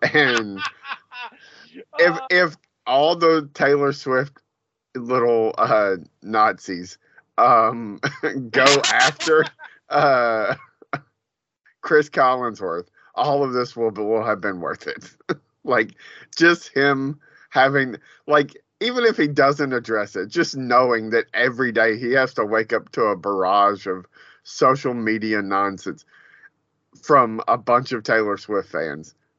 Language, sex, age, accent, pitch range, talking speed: English, male, 30-49, American, 100-140 Hz, 125 wpm